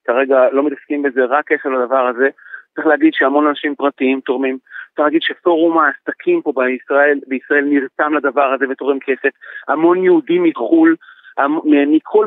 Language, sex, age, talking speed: Hebrew, male, 40-59, 145 wpm